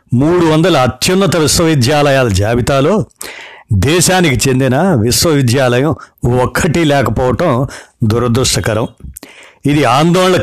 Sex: male